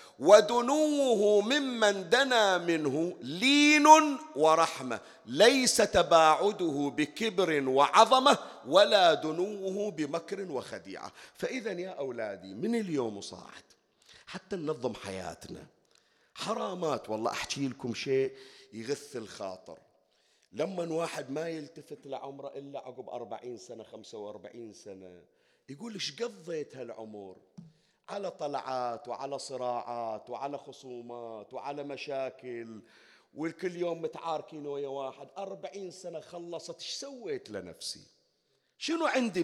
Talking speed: 100 wpm